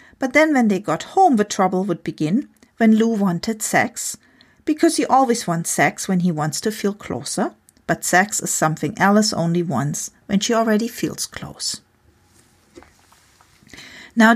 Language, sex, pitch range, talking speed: English, female, 180-240 Hz, 160 wpm